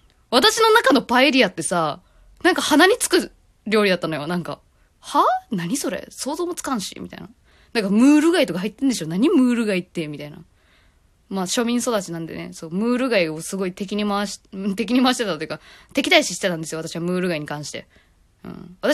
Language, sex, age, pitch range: Japanese, female, 20-39, 175-280 Hz